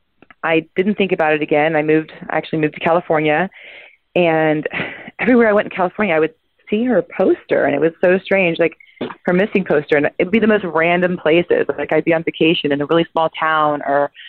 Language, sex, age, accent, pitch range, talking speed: English, female, 30-49, American, 150-180 Hz, 215 wpm